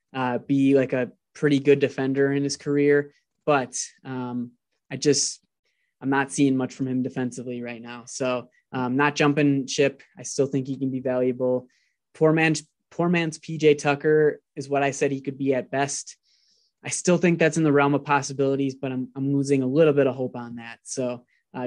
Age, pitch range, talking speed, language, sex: 20-39, 125-145 Hz, 200 wpm, English, male